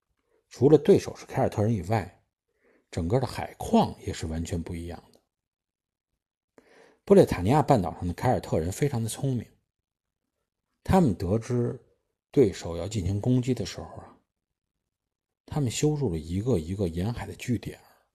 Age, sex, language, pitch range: 50-69, male, Chinese, 90-130 Hz